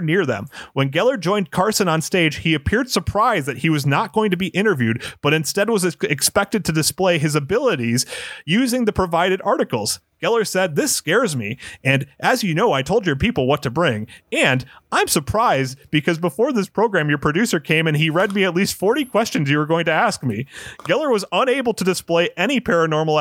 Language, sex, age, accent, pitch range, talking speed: English, male, 30-49, American, 125-190 Hz, 200 wpm